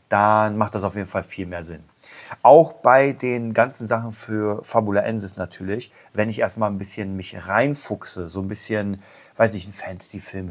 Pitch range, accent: 95-120 Hz, German